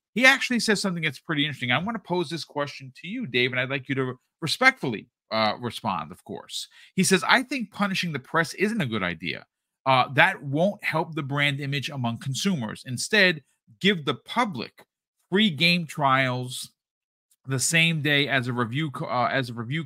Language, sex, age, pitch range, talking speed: English, male, 40-59, 120-165 Hz, 195 wpm